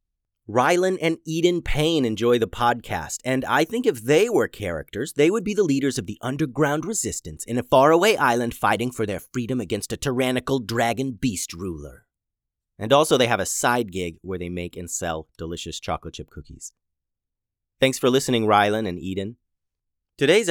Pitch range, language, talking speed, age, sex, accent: 100-140 Hz, English, 175 wpm, 30-49, male, American